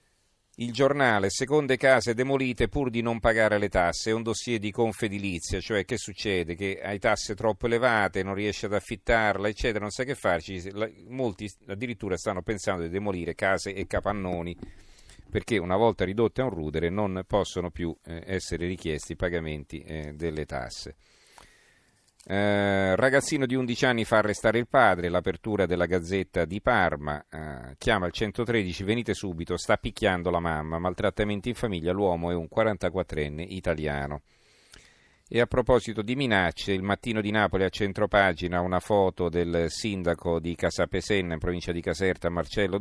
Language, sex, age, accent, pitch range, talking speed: Italian, male, 40-59, native, 85-110 Hz, 155 wpm